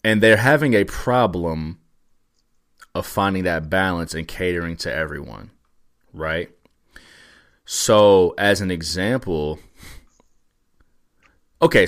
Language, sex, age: English, male, 30-49